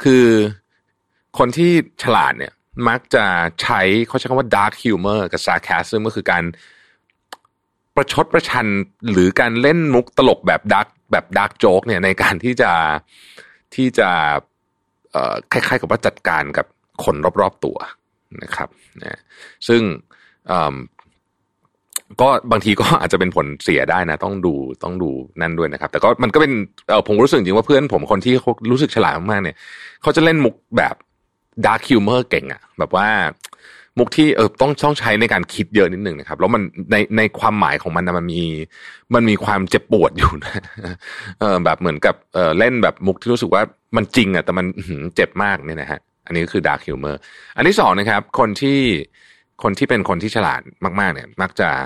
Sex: male